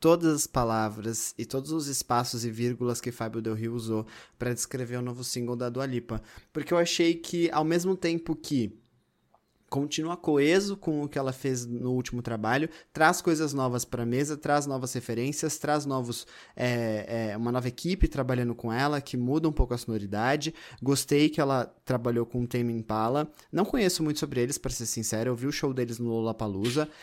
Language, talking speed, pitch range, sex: Portuguese, 200 wpm, 115-150 Hz, male